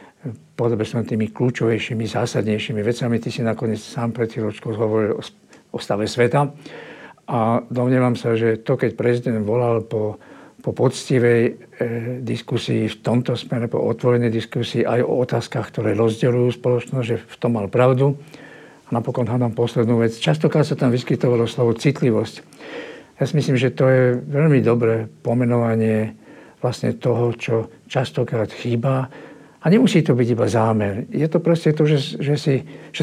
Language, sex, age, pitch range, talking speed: Slovak, male, 50-69, 115-130 Hz, 155 wpm